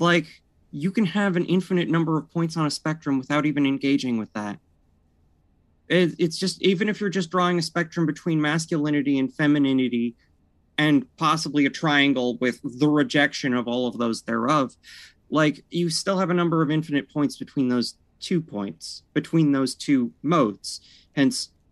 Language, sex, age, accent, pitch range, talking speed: English, male, 30-49, American, 115-175 Hz, 165 wpm